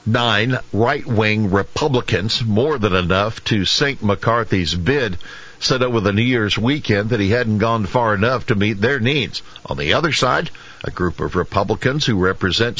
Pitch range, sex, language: 95-120 Hz, male, English